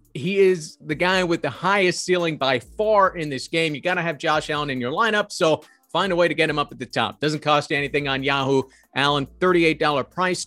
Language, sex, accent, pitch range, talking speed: English, male, American, 135-180 Hz, 235 wpm